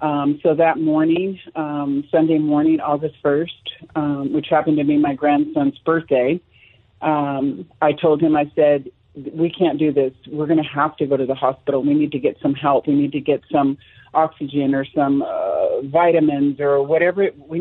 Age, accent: 40-59, American